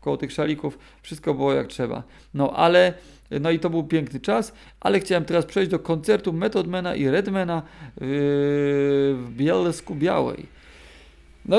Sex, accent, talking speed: male, native, 150 wpm